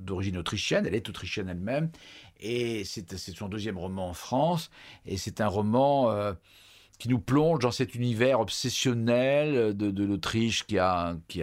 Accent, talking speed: French, 170 wpm